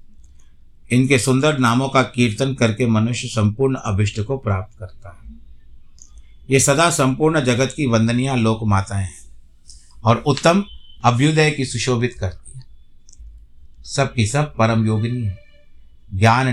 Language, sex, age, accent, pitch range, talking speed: Hindi, male, 50-69, native, 90-125 Hz, 130 wpm